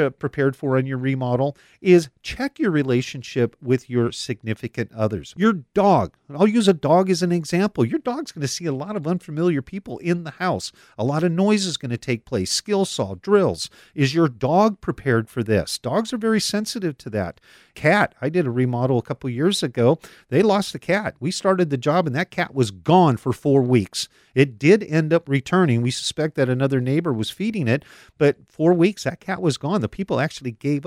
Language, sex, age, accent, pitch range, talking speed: English, male, 50-69, American, 125-175 Hz, 210 wpm